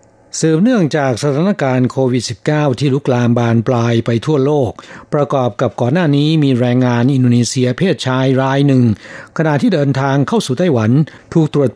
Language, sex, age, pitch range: Thai, male, 60-79, 120-150 Hz